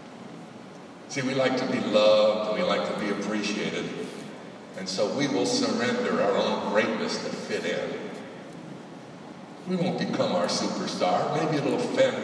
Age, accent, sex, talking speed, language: 60-79, American, male, 155 wpm, English